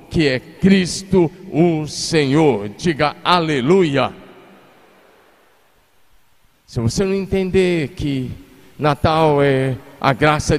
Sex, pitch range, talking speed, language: male, 145-205 Hz, 90 wpm, Portuguese